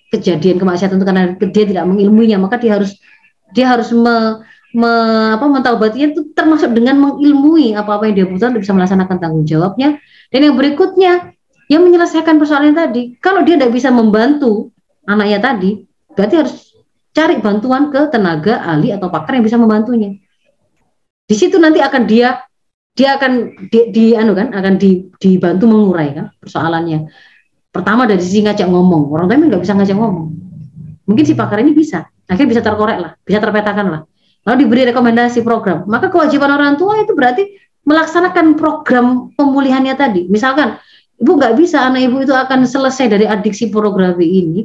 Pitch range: 195-270 Hz